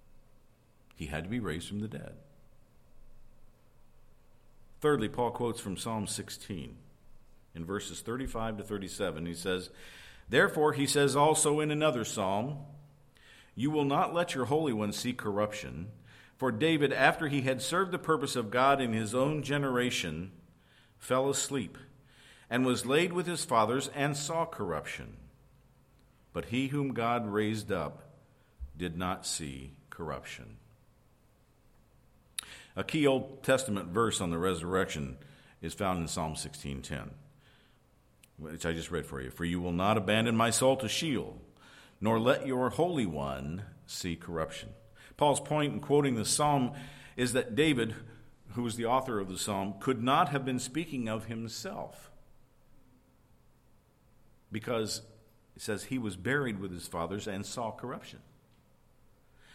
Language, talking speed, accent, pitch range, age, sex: English, 145 wpm, American, 100-135 Hz, 50-69, male